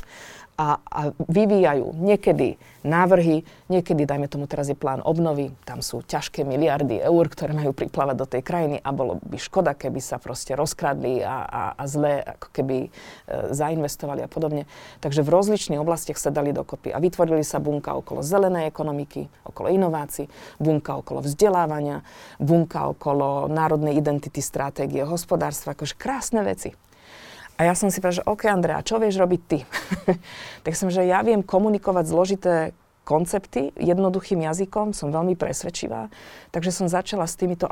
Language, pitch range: Slovak, 150-180 Hz